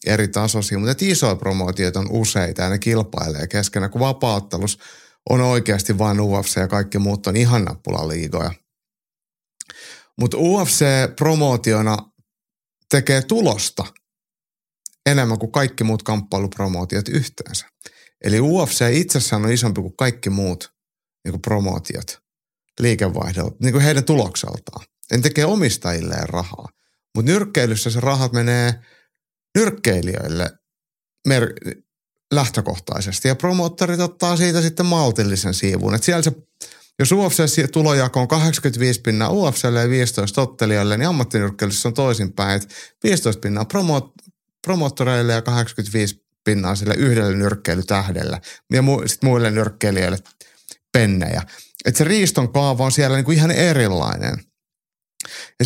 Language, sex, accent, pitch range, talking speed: Finnish, male, native, 100-145 Hz, 115 wpm